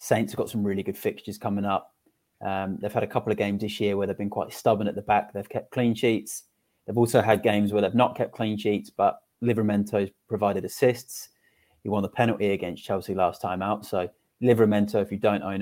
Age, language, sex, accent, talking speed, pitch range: 30-49, English, male, British, 230 wpm, 100-110 Hz